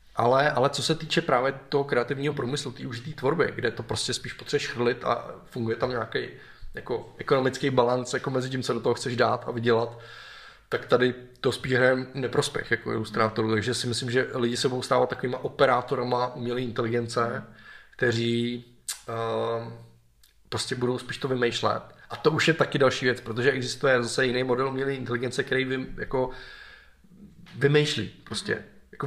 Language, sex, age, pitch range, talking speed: Czech, male, 20-39, 120-135 Hz, 165 wpm